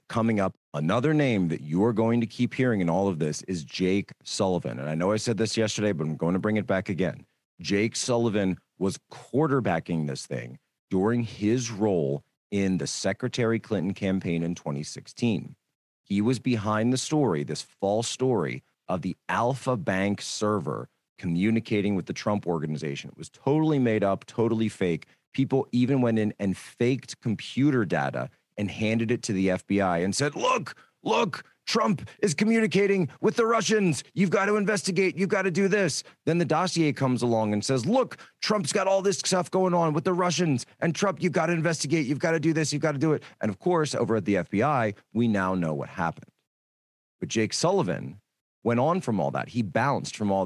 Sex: male